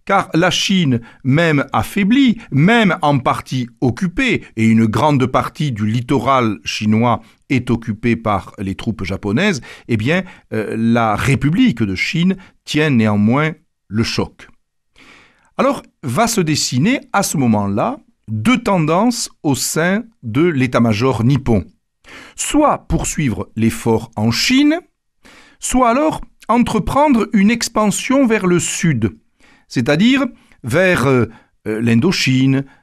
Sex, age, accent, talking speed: male, 60-79, French, 115 wpm